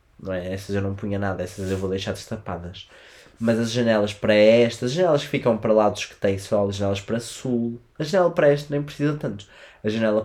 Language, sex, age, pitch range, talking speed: Portuguese, male, 20-39, 100-120 Hz, 225 wpm